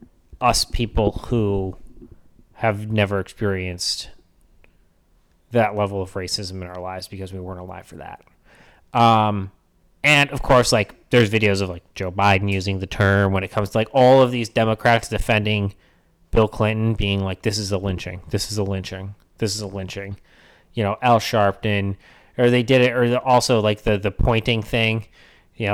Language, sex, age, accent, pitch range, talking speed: English, male, 30-49, American, 100-110 Hz, 175 wpm